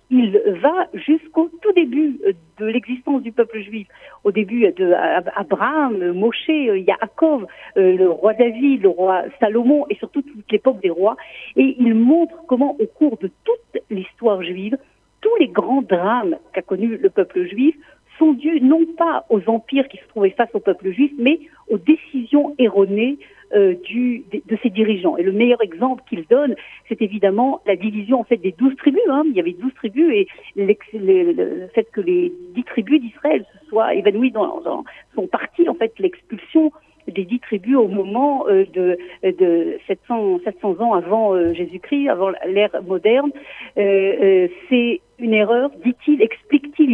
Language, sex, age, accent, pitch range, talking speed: French, female, 50-69, French, 210-300 Hz, 170 wpm